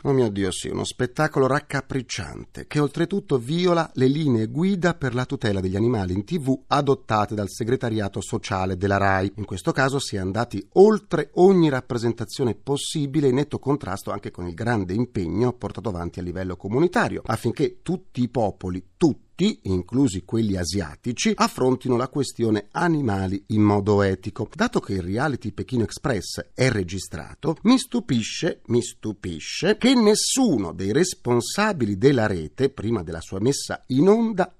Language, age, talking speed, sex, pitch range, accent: Italian, 40-59, 155 wpm, male, 100-160 Hz, native